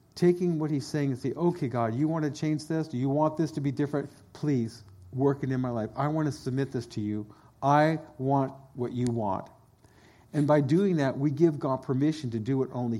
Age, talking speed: 50-69, 230 wpm